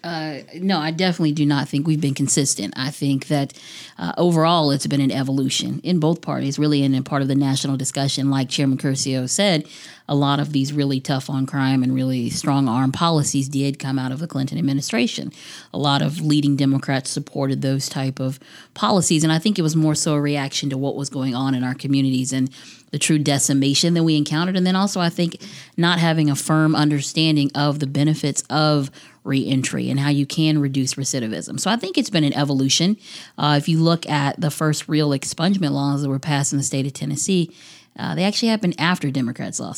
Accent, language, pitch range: American, English, 135-155 Hz